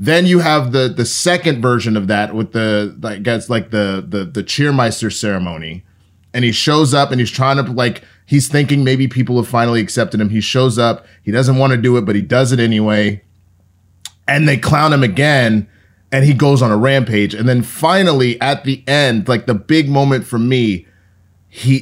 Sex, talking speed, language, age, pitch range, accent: male, 205 wpm, English, 30-49, 105-140 Hz, American